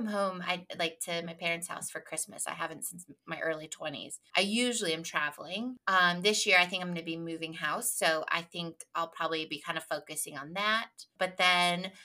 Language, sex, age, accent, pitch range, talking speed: English, female, 20-39, American, 170-220 Hz, 215 wpm